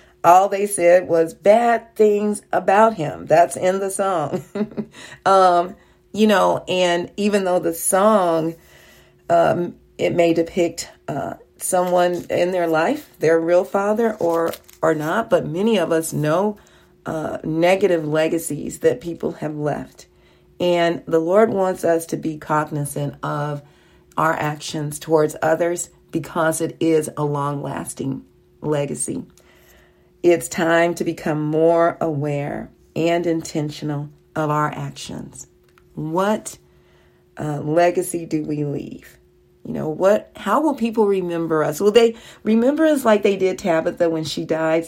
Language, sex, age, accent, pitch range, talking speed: English, female, 40-59, American, 155-200 Hz, 140 wpm